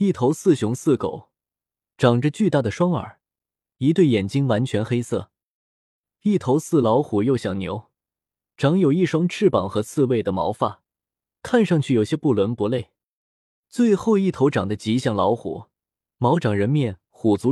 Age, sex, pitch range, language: 20-39, male, 105-165 Hz, Chinese